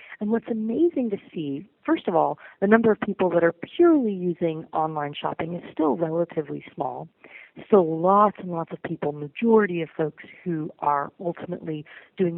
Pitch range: 165-215 Hz